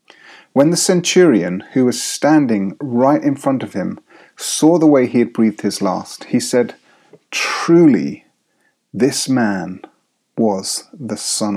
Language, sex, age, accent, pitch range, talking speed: English, male, 30-49, British, 110-135 Hz, 140 wpm